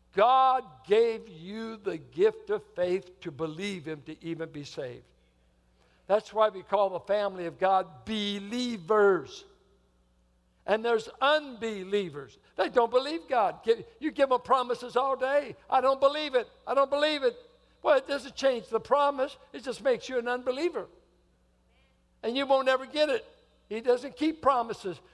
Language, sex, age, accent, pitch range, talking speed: English, male, 60-79, American, 185-270 Hz, 160 wpm